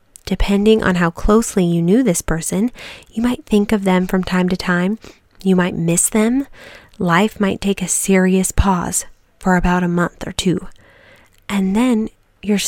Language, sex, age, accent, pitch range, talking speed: English, female, 20-39, American, 185-225 Hz, 170 wpm